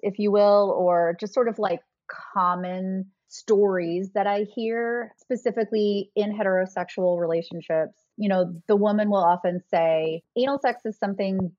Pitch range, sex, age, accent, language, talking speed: 180-225 Hz, female, 30-49, American, English, 145 wpm